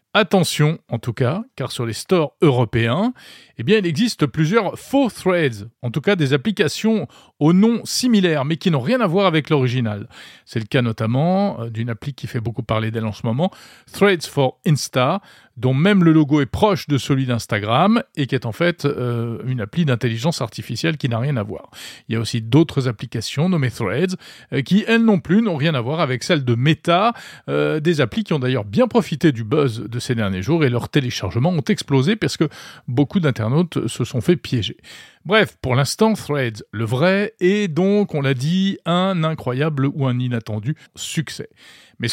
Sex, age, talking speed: male, 40-59, 200 wpm